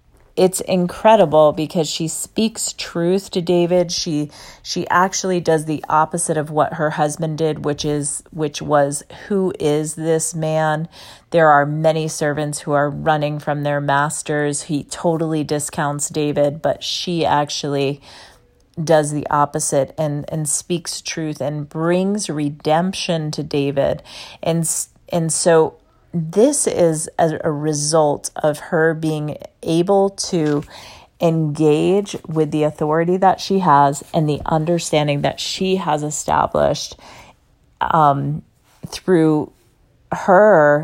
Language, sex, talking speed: English, female, 125 wpm